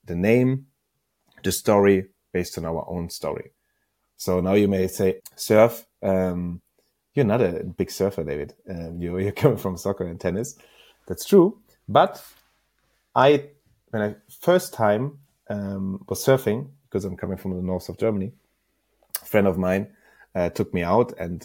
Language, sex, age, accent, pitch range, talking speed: English, male, 30-49, German, 95-125 Hz, 160 wpm